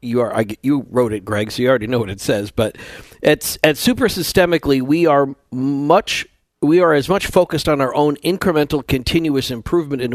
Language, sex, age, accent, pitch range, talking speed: English, male, 50-69, American, 120-160 Hz, 215 wpm